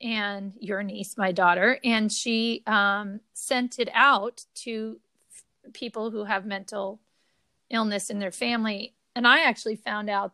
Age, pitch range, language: 40-59, 205-240 Hz, English